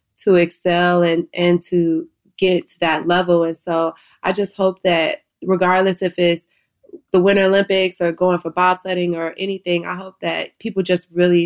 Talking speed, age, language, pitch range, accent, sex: 175 wpm, 20-39, English, 170-185 Hz, American, female